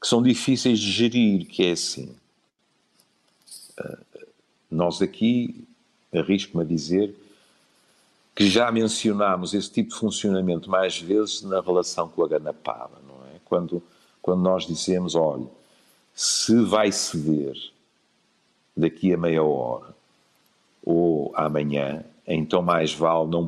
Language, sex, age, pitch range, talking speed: Portuguese, male, 50-69, 80-110 Hz, 120 wpm